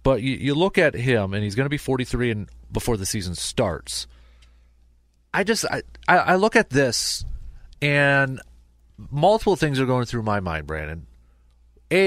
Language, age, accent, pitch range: English, 30-49, American, 100-135 Hz